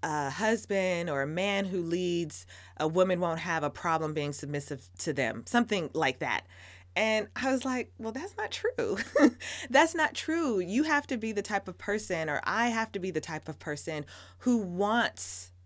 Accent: American